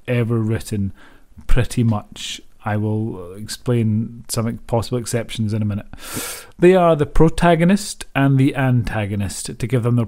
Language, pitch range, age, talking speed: English, 115-145 Hz, 30-49, 145 wpm